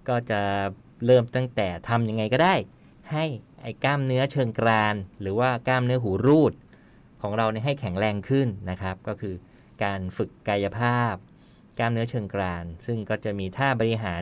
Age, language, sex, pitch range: 20-39, Thai, male, 105-130 Hz